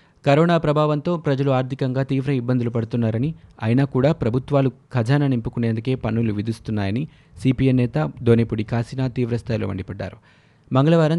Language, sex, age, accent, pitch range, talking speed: Telugu, male, 20-39, native, 110-135 Hz, 115 wpm